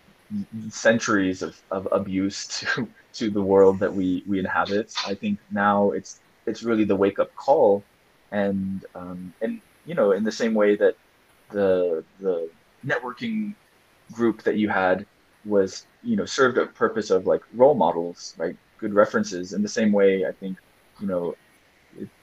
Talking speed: 165 wpm